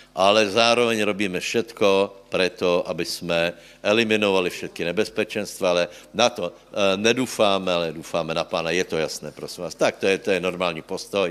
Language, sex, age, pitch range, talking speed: Slovak, male, 60-79, 95-115 Hz, 170 wpm